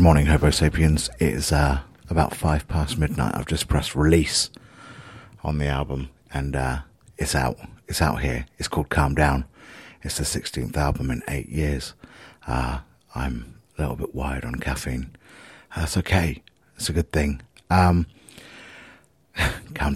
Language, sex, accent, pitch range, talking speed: English, male, British, 70-85 Hz, 155 wpm